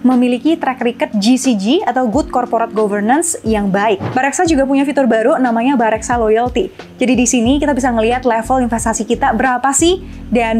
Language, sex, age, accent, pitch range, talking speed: Indonesian, female, 10-29, native, 230-275 Hz, 170 wpm